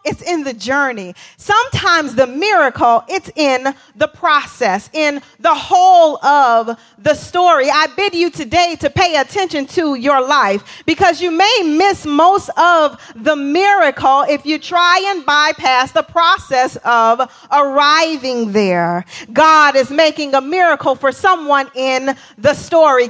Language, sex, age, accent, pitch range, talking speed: English, female, 40-59, American, 225-325 Hz, 145 wpm